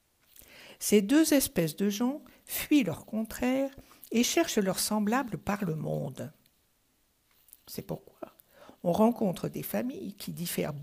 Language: French